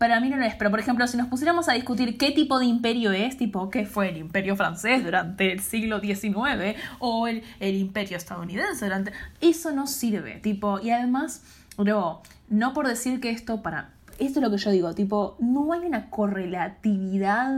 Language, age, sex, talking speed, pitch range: Spanish, 10-29, female, 200 wpm, 195-255 Hz